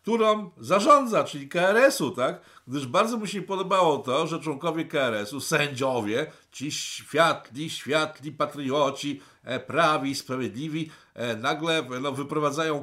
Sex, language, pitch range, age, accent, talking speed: male, Polish, 125-165 Hz, 50-69, native, 110 wpm